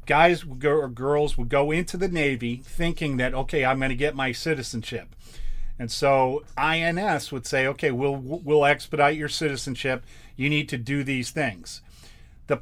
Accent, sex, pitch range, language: American, male, 130-155 Hz, English